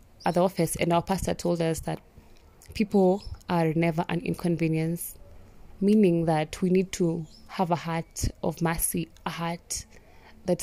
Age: 20-39